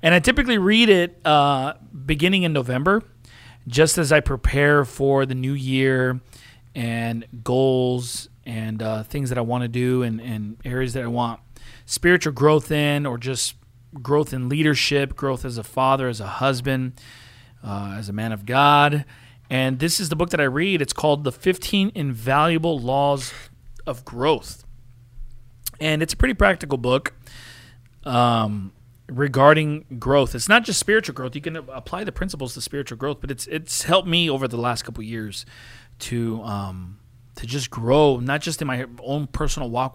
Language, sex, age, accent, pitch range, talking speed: English, male, 40-59, American, 120-150 Hz, 175 wpm